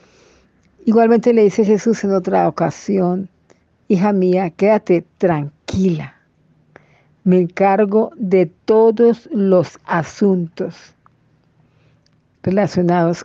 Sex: female